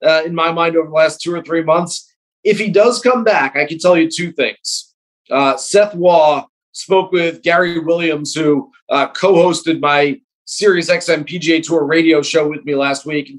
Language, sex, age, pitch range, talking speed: English, male, 30-49, 155-195 Hz, 195 wpm